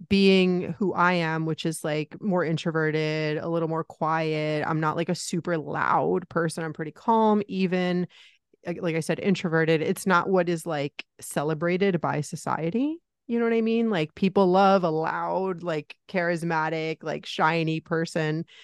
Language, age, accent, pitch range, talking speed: English, 30-49, American, 160-190 Hz, 165 wpm